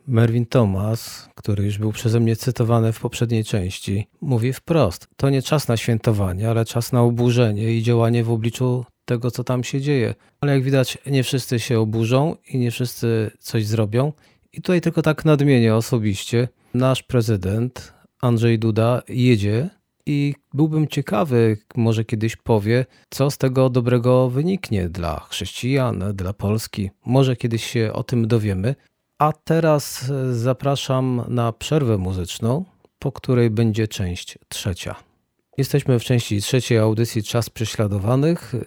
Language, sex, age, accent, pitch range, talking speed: Polish, male, 40-59, native, 115-130 Hz, 145 wpm